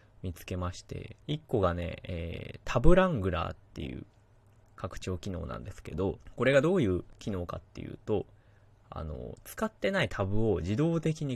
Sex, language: male, Japanese